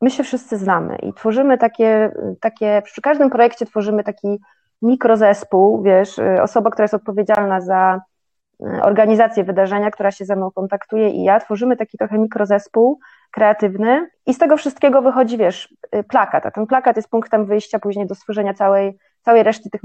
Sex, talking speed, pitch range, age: female, 165 wpm, 205-240 Hz, 30-49